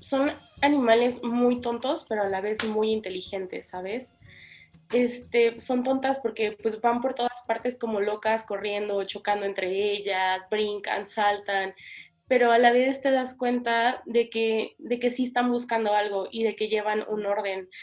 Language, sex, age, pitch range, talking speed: Spanish, female, 20-39, 195-235 Hz, 165 wpm